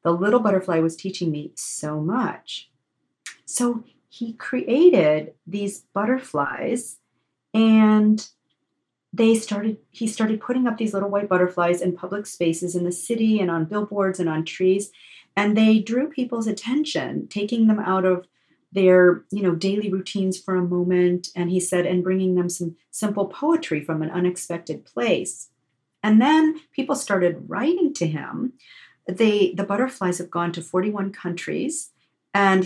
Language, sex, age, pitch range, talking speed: English, female, 40-59, 170-220 Hz, 150 wpm